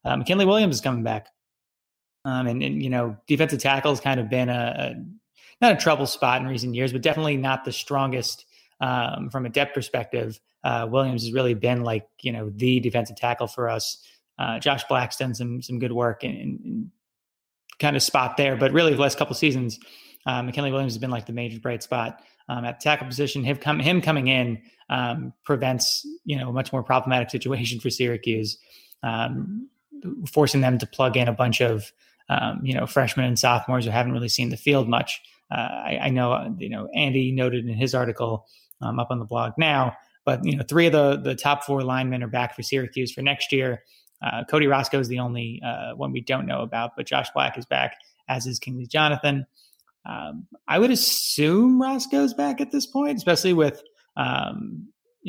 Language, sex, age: English, male, 20-39